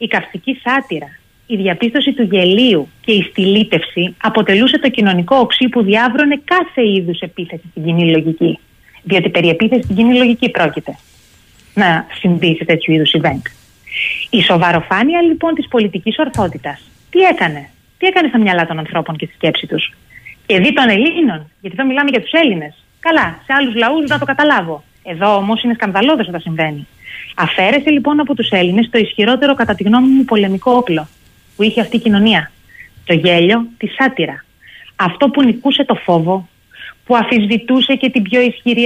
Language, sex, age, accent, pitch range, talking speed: Greek, female, 30-49, native, 180-255 Hz, 165 wpm